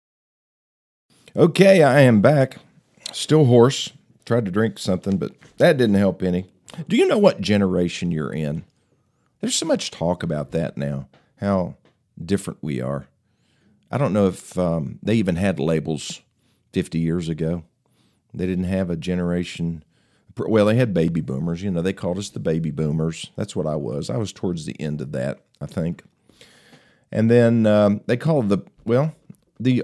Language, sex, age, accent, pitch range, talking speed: English, male, 50-69, American, 85-120 Hz, 170 wpm